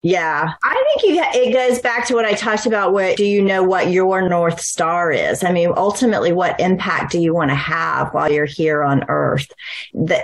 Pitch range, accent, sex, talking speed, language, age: 155-185 Hz, American, female, 210 wpm, English, 30-49